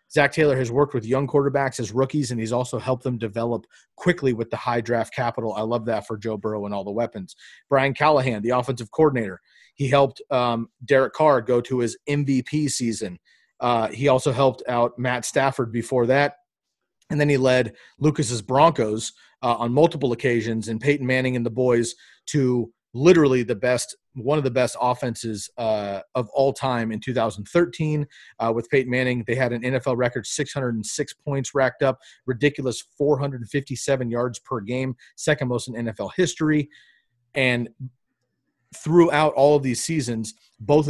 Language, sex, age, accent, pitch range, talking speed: English, male, 30-49, American, 120-140 Hz, 170 wpm